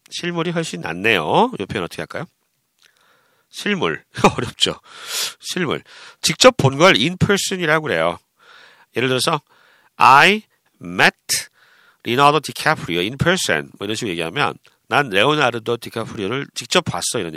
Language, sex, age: Korean, male, 40-59